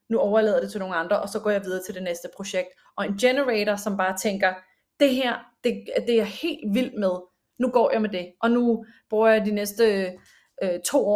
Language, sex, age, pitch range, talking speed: Danish, female, 30-49, 200-245 Hz, 235 wpm